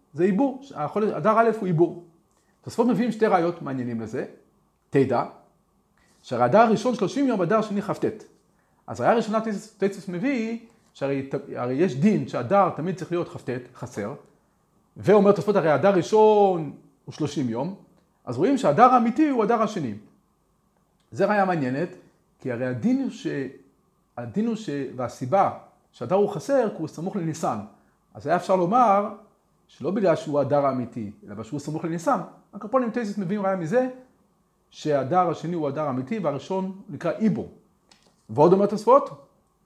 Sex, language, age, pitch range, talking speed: male, Hebrew, 40-59, 155-220 Hz, 150 wpm